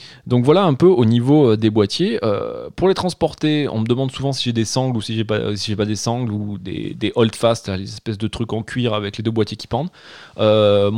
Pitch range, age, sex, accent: 110-140 Hz, 20-39, male, French